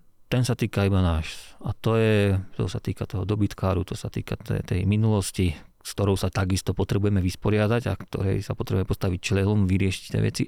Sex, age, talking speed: male, 40-59, 195 wpm